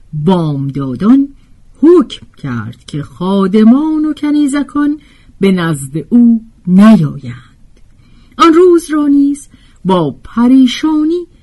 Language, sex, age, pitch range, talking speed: Persian, female, 50-69, 165-255 Hz, 90 wpm